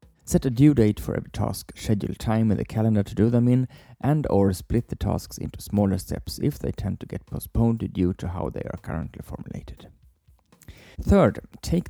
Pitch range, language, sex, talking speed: 95-115 Hz, English, male, 195 wpm